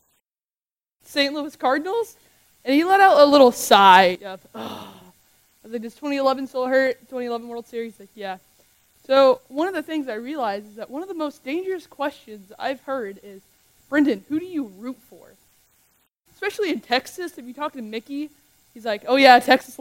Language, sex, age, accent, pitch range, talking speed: English, female, 20-39, American, 205-265 Hz, 180 wpm